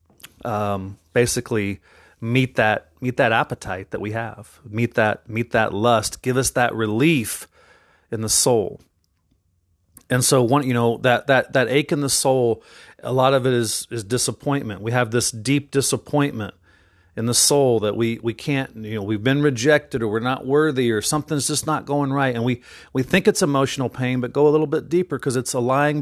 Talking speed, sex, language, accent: 195 wpm, male, English, American